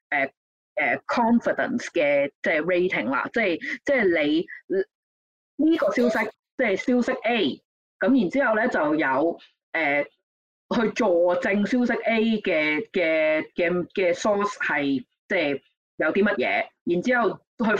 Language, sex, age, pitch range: Chinese, female, 20-39, 185-295 Hz